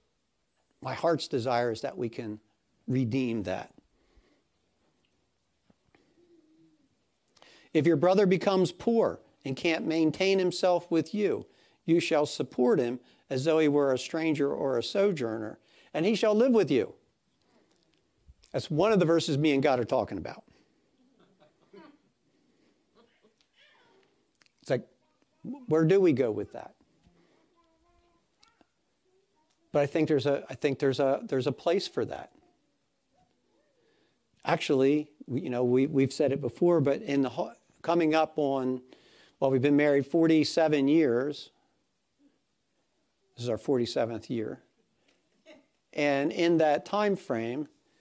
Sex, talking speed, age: male, 130 wpm, 60-79